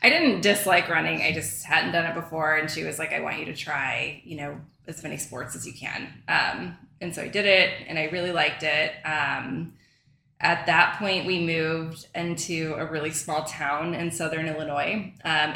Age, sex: 20-39, female